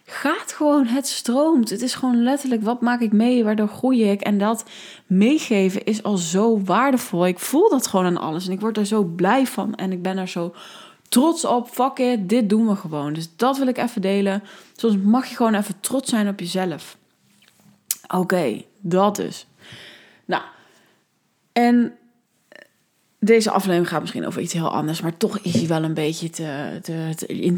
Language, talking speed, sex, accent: Dutch, 180 wpm, female, Dutch